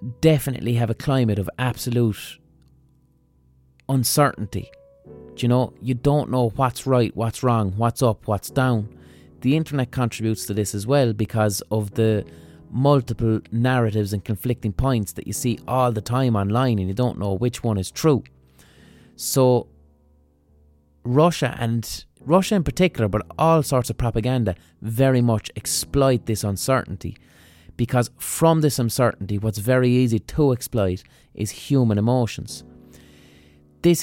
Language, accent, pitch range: English, Irish, 90-125 Hz